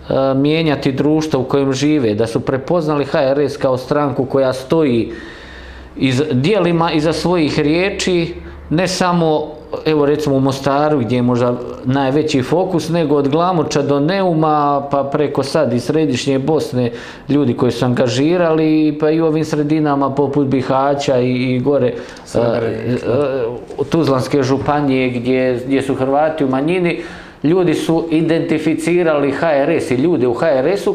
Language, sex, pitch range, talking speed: Croatian, male, 135-165 Hz, 140 wpm